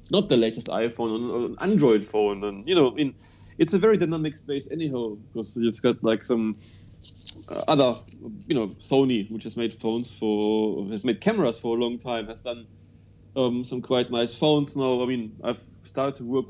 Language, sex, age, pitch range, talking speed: English, male, 30-49, 110-145 Hz, 195 wpm